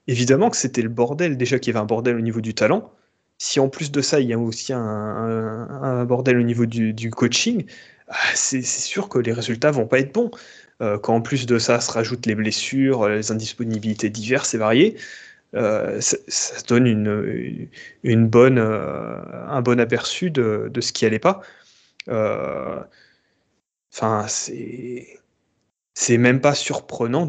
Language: French